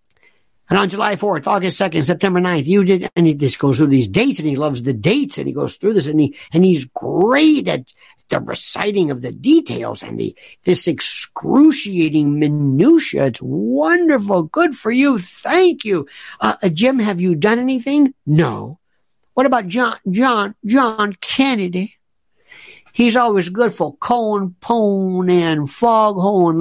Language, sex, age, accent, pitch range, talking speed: English, male, 60-79, American, 170-240 Hz, 160 wpm